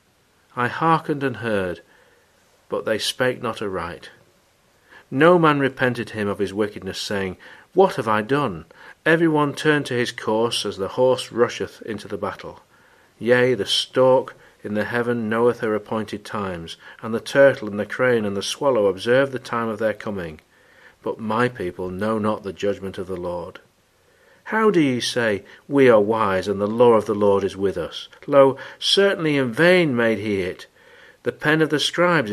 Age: 40-59